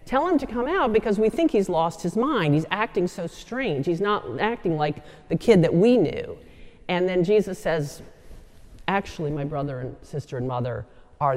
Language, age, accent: English, 40-59, American